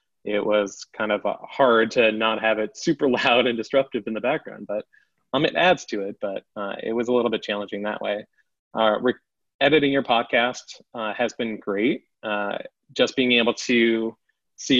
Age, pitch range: 20-39, 105-115 Hz